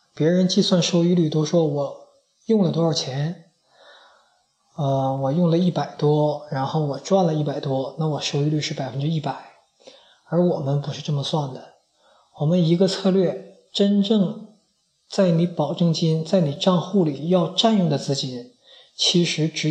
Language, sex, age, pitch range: Chinese, male, 20-39, 145-185 Hz